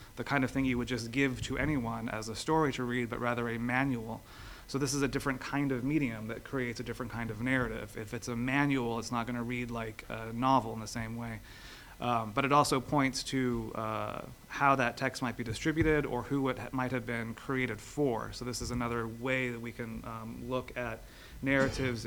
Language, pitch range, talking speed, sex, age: English, 115-135 Hz, 225 wpm, male, 30-49